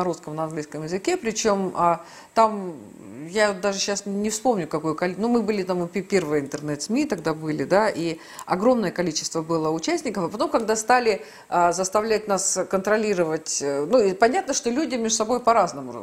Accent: native